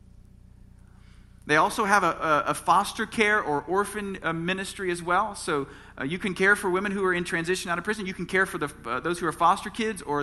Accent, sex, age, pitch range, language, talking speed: American, male, 40-59, 150-190 Hz, English, 225 wpm